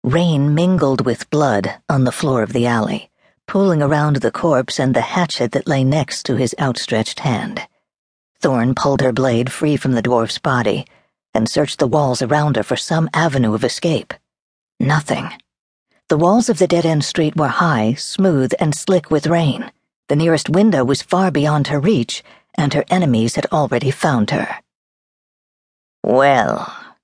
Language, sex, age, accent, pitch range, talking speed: English, female, 50-69, American, 120-160 Hz, 165 wpm